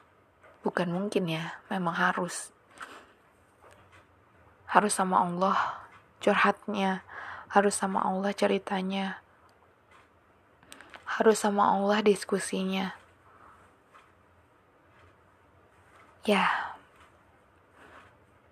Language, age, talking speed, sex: Malay, 20-39, 60 wpm, female